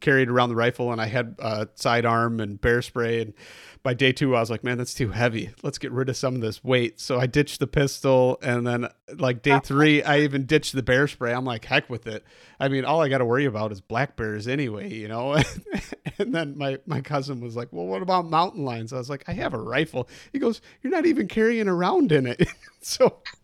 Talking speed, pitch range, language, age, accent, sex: 245 wpm, 115-145 Hz, English, 40-59, American, male